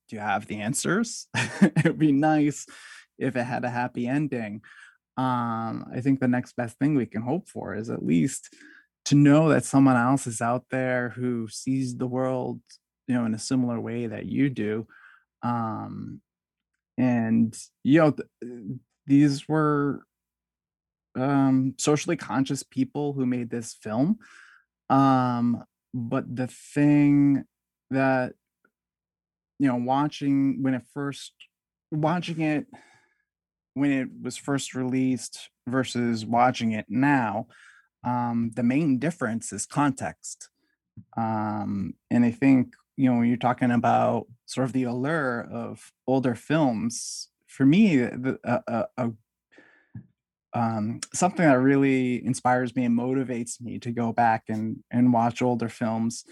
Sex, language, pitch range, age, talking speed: male, English, 120-140 Hz, 20-39, 140 wpm